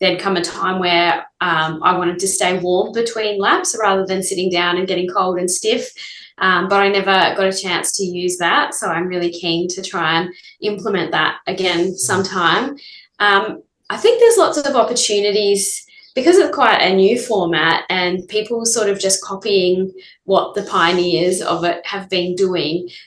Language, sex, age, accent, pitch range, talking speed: English, female, 20-39, Australian, 175-205 Hz, 180 wpm